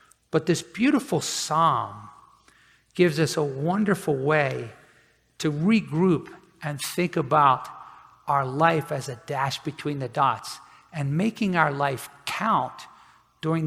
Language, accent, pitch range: English, American, 135-165 Hz